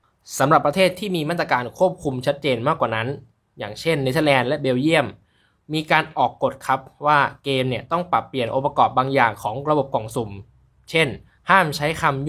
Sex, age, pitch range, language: male, 20-39, 120-165 Hz, Thai